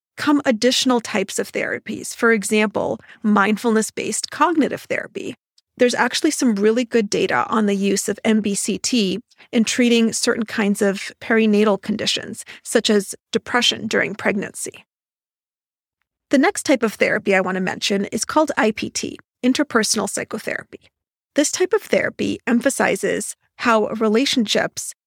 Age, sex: 40-59, female